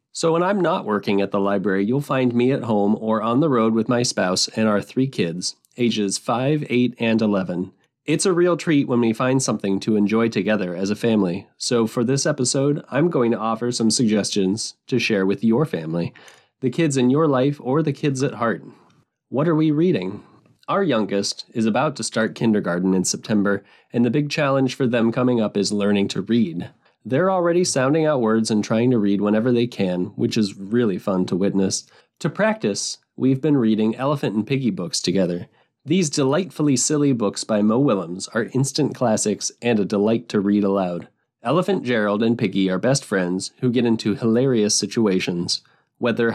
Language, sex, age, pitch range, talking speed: English, male, 30-49, 100-135 Hz, 195 wpm